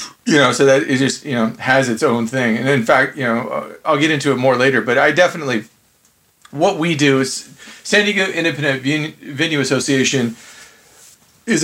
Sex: male